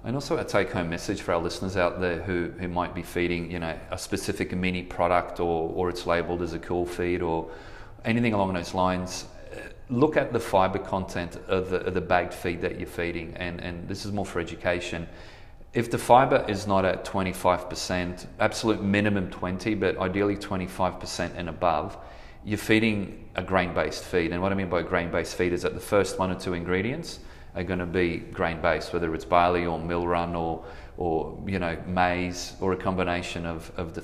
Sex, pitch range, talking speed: male, 90-100 Hz, 195 wpm